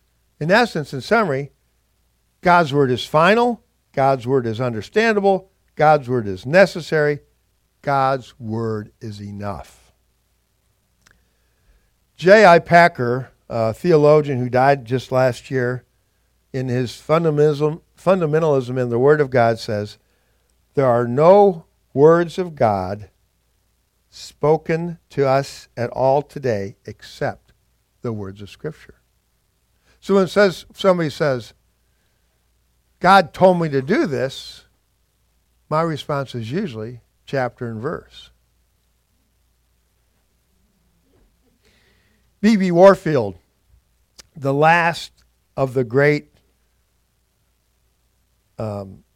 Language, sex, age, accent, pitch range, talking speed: English, male, 50-69, American, 105-155 Hz, 100 wpm